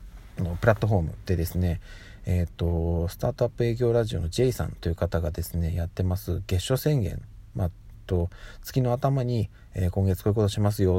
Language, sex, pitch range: Japanese, male, 90-115 Hz